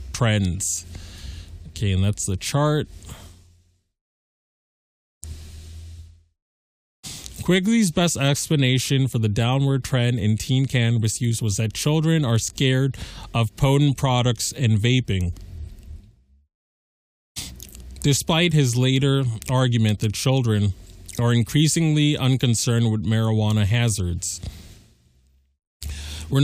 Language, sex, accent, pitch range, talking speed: English, male, American, 105-140 Hz, 90 wpm